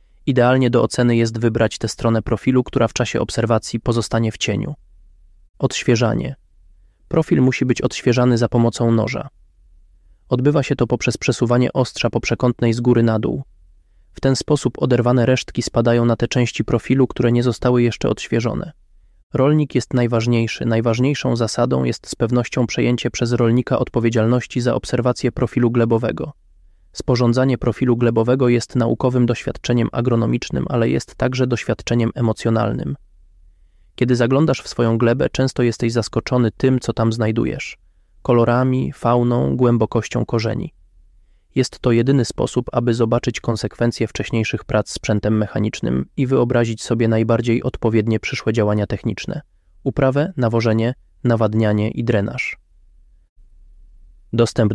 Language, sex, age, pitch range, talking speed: Polish, male, 20-39, 105-125 Hz, 130 wpm